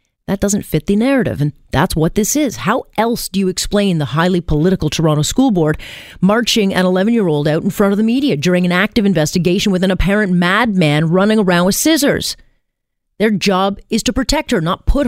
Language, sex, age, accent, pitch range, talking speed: English, female, 40-59, American, 165-215 Hz, 200 wpm